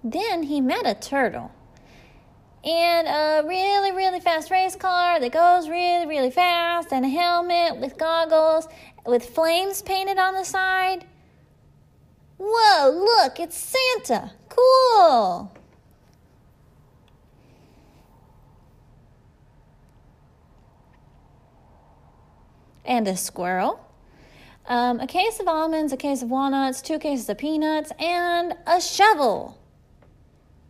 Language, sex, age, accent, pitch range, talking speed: English, female, 20-39, American, 245-365 Hz, 100 wpm